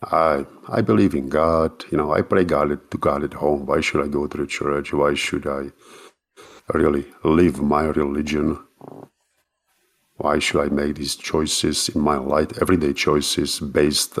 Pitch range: 70-95 Hz